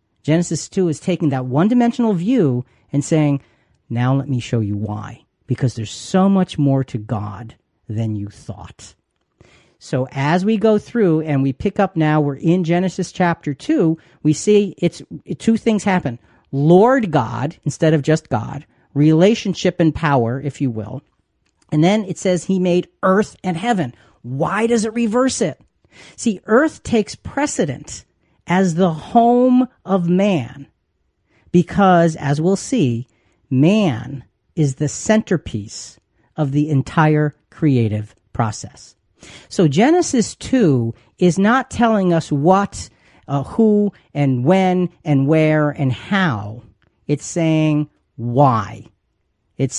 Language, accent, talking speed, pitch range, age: English, American, 140 wpm, 130-185 Hz, 40-59